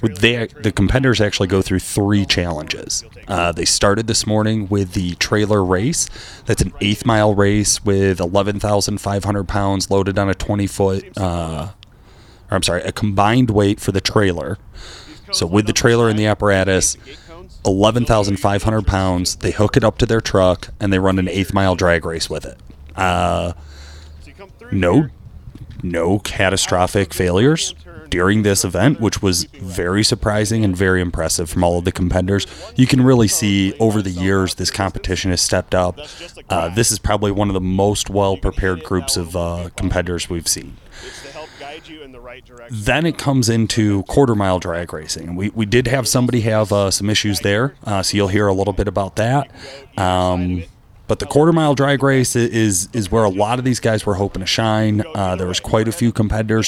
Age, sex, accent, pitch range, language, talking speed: 30-49, male, American, 95-110 Hz, English, 170 wpm